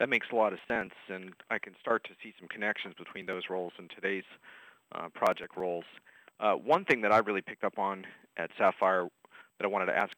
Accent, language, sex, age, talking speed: American, English, male, 40-59, 225 wpm